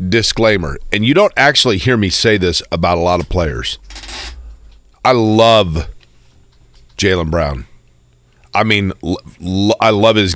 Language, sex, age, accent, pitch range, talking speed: English, male, 40-59, American, 95-120 Hz, 145 wpm